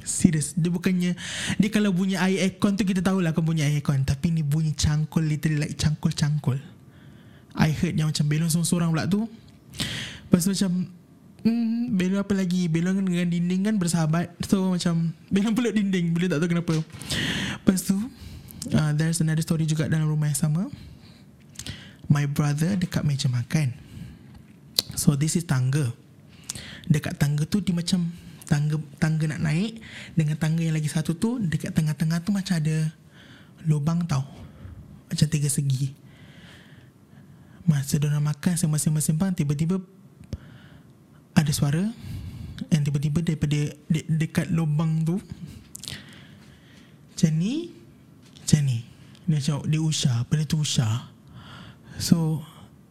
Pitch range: 155-180 Hz